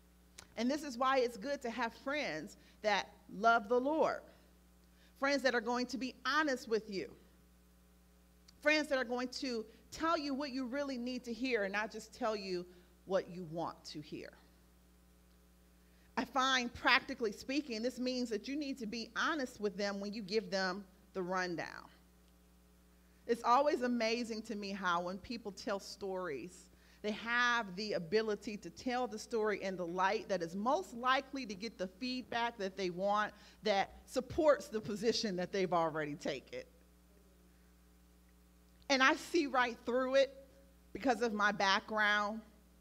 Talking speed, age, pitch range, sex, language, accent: 160 wpm, 40-59, 160-245 Hz, female, English, American